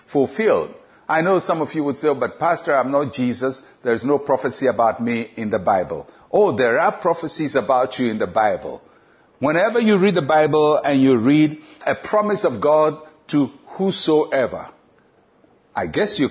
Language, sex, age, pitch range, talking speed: English, male, 60-79, 130-180 Hz, 175 wpm